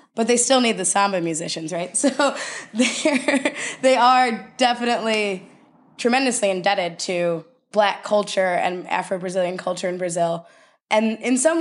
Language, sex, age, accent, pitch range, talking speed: English, female, 20-39, American, 180-215 Hz, 130 wpm